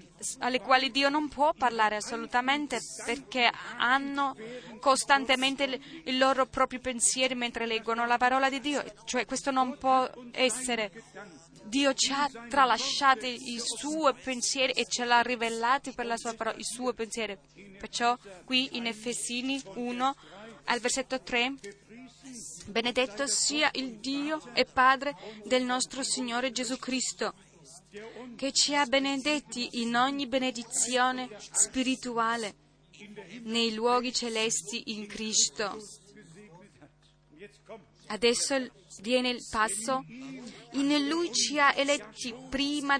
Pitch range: 220-265 Hz